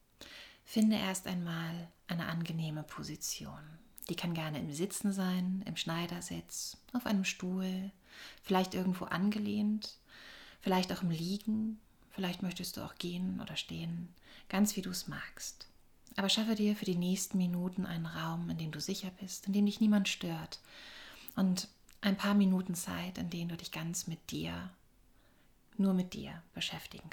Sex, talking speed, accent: female, 155 wpm, German